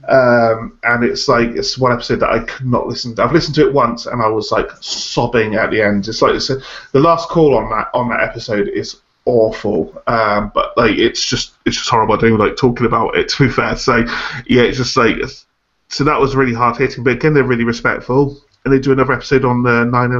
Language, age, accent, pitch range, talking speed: English, 30-49, British, 115-140 Hz, 245 wpm